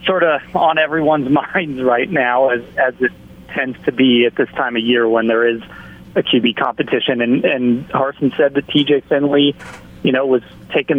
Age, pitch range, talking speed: 30-49, 125-150 Hz, 190 wpm